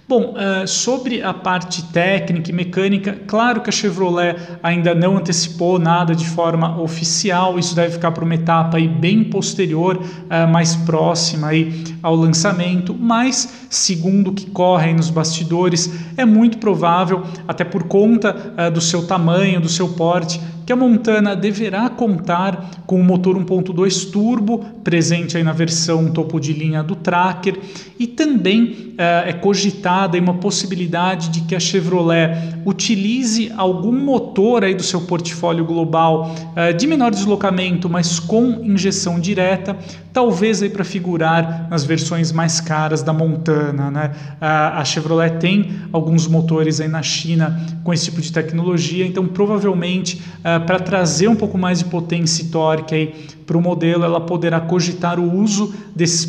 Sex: male